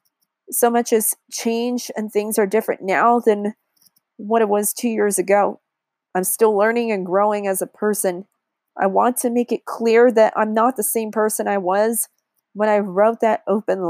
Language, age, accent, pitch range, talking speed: English, 30-49, American, 205-235 Hz, 185 wpm